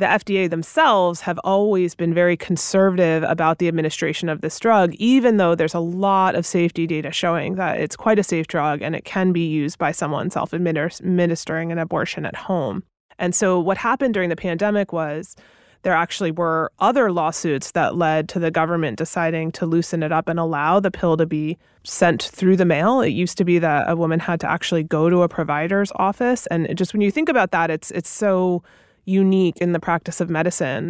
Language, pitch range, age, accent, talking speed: English, 160-190 Hz, 30-49, American, 205 wpm